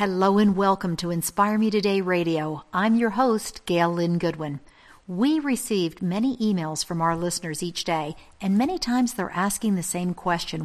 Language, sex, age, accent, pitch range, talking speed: English, female, 50-69, American, 175-225 Hz, 175 wpm